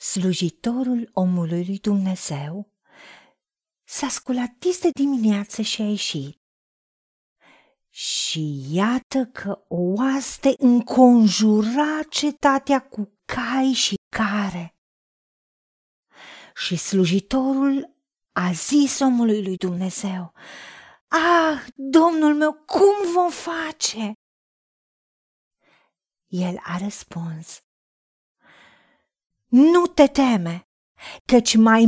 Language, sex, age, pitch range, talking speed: Romanian, female, 40-59, 180-275 Hz, 80 wpm